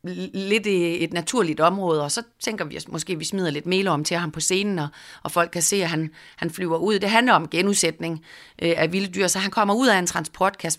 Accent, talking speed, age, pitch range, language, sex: native, 220 wpm, 30-49, 160-190 Hz, Danish, female